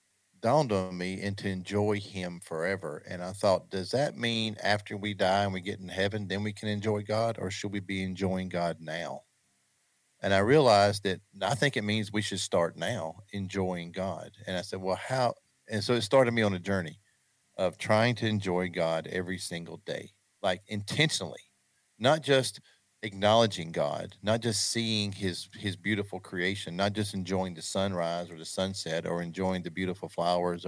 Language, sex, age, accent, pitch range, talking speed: English, male, 40-59, American, 90-110 Hz, 185 wpm